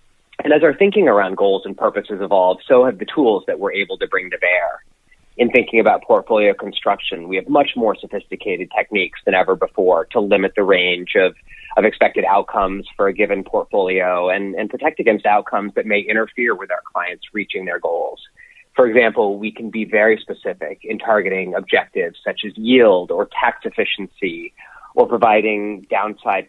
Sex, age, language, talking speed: male, 30-49, English, 180 wpm